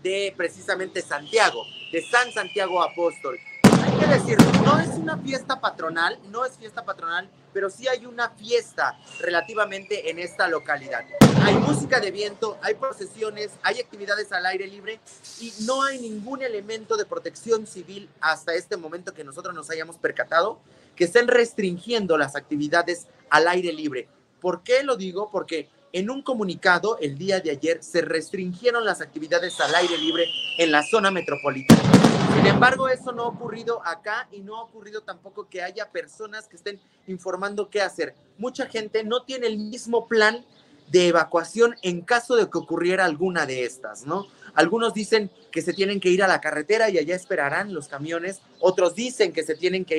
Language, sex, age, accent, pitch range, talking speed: Spanish, male, 30-49, Mexican, 165-220 Hz, 175 wpm